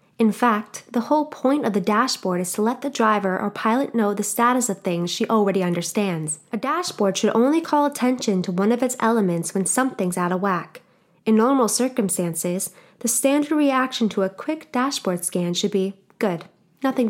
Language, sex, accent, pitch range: English, female, American, 185-255 Hz